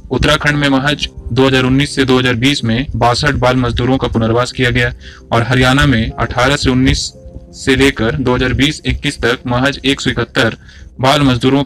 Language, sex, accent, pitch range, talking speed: Hindi, male, native, 120-140 Hz, 150 wpm